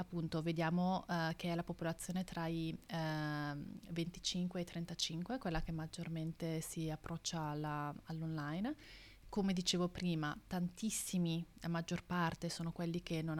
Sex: female